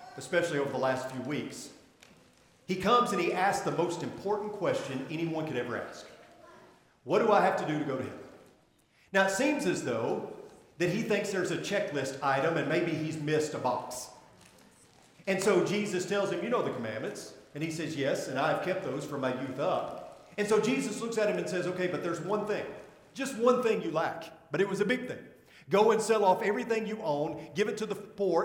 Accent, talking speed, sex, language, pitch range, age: American, 220 wpm, male, English, 150-205 Hz, 40-59